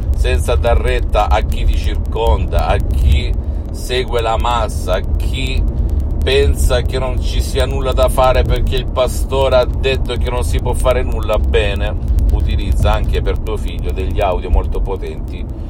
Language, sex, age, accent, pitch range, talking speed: Italian, male, 50-69, native, 75-90 Hz, 165 wpm